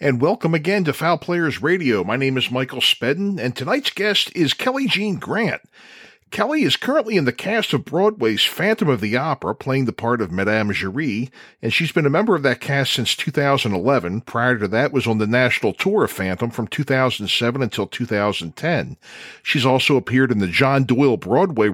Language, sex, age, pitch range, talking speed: English, male, 40-59, 105-160 Hz, 190 wpm